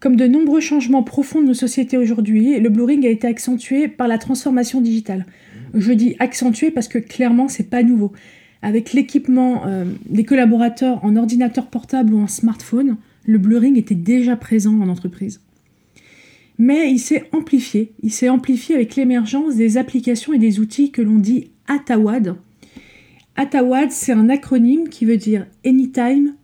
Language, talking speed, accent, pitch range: French, 160 wpm, French, 220-255 Hz